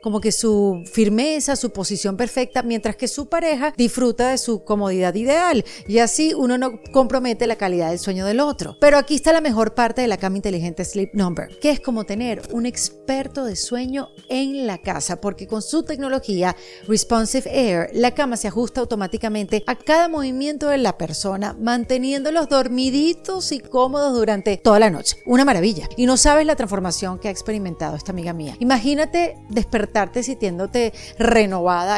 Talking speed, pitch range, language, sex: 175 wpm, 200-260 Hz, Spanish, female